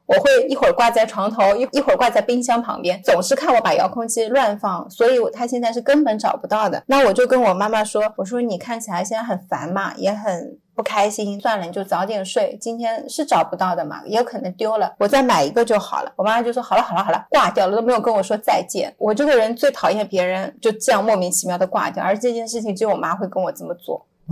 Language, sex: Chinese, female